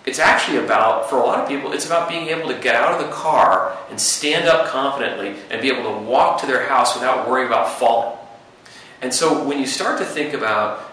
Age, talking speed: 40-59, 230 wpm